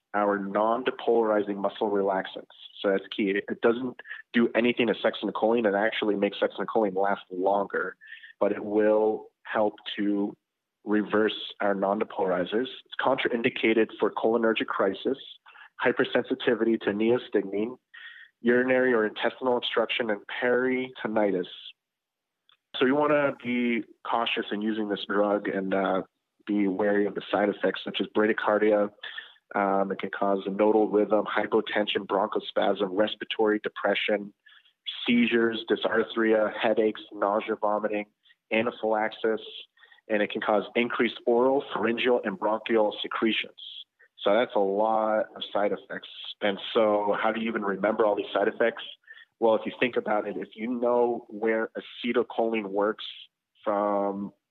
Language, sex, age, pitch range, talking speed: English, male, 30-49, 100-115 Hz, 130 wpm